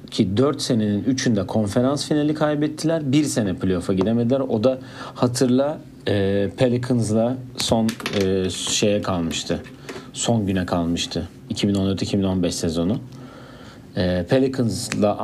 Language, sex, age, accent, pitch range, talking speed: Turkish, male, 40-59, native, 100-130 Hz, 95 wpm